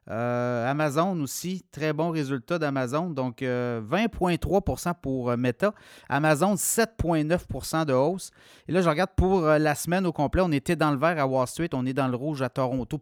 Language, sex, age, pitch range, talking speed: French, male, 30-49, 130-160 Hz, 185 wpm